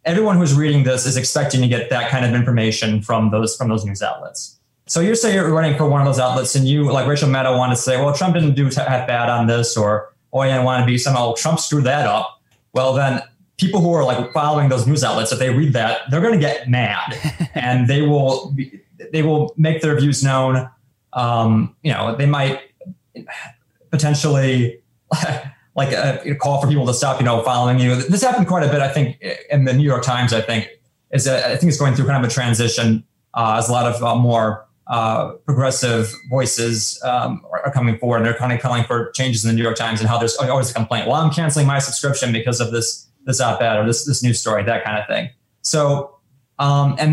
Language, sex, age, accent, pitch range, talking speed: English, male, 20-39, American, 120-145 Hz, 235 wpm